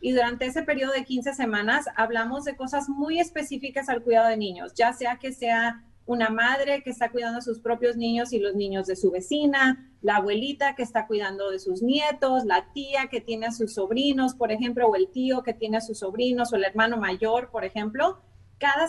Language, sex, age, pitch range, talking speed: Spanish, female, 30-49, 210-245 Hz, 215 wpm